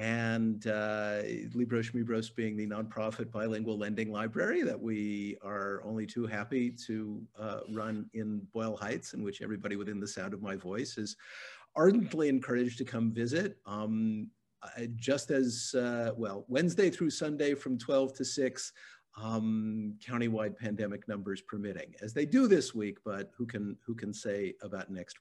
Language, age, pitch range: English, 50-69, 105-130 Hz